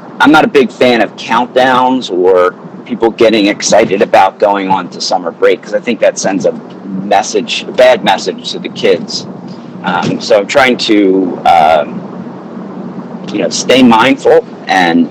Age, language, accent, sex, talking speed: 40-59, English, American, male, 165 wpm